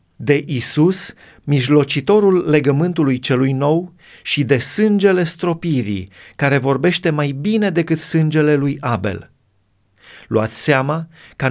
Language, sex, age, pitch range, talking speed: Romanian, male, 30-49, 125-160 Hz, 110 wpm